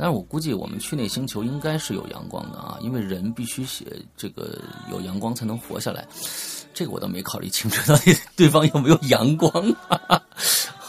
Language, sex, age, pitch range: Chinese, male, 30-49, 100-145 Hz